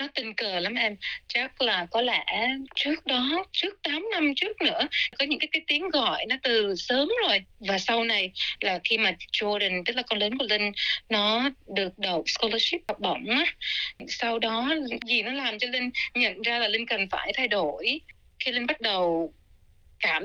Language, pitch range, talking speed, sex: Vietnamese, 215-305 Hz, 195 wpm, female